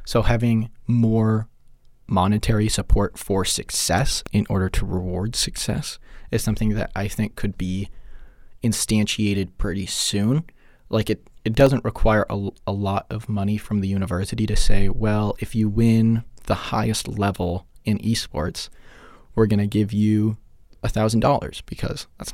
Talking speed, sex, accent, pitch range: 145 wpm, male, American, 100-115 Hz